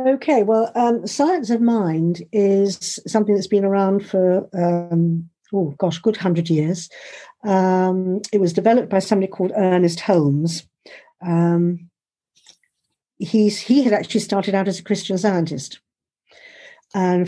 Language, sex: English, female